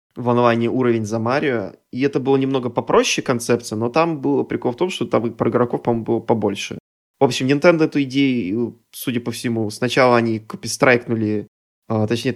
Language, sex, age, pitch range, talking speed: Russian, male, 20-39, 110-135 Hz, 185 wpm